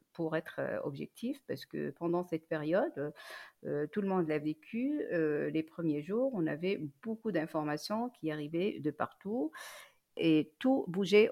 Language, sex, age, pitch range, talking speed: French, female, 50-69, 155-215 Hz, 155 wpm